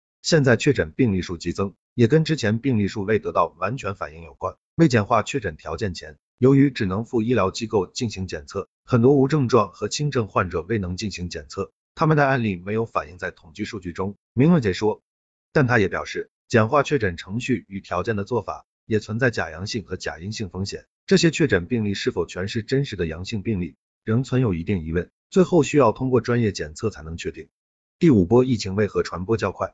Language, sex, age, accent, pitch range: Chinese, male, 50-69, native, 95-130 Hz